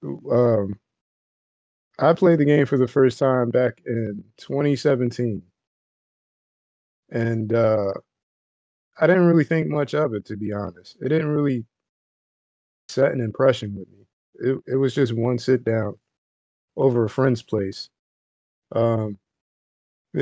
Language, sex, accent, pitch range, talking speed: English, male, American, 100-125 Hz, 130 wpm